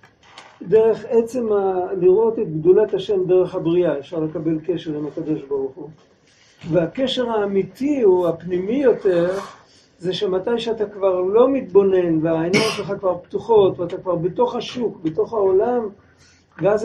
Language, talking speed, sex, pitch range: Hebrew, 135 wpm, male, 175-240 Hz